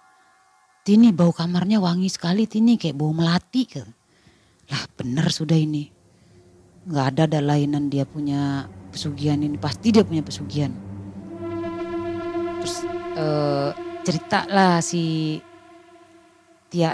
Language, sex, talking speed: Indonesian, female, 110 wpm